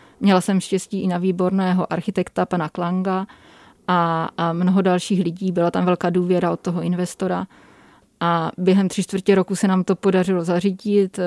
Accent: native